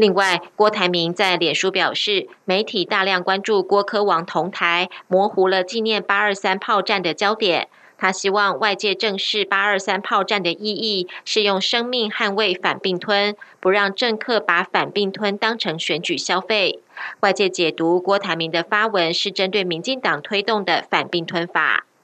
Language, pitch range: German, 175-210 Hz